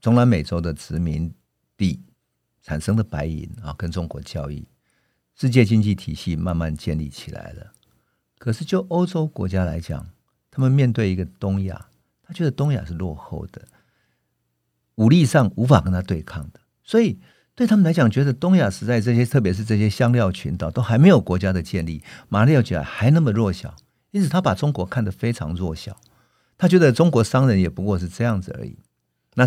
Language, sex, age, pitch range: Chinese, male, 50-69, 85-125 Hz